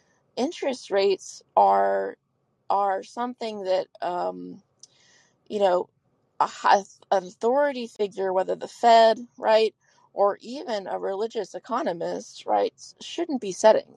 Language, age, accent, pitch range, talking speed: English, 20-39, American, 190-245 Hz, 105 wpm